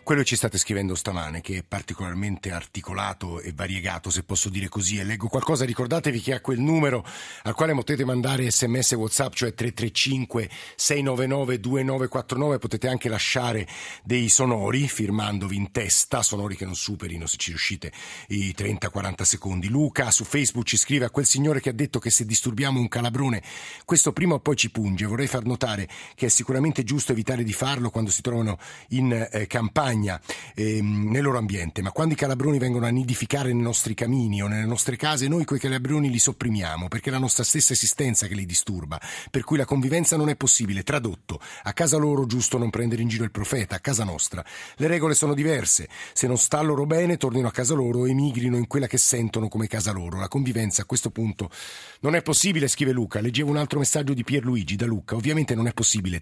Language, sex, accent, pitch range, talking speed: Italian, male, native, 105-135 Hz, 200 wpm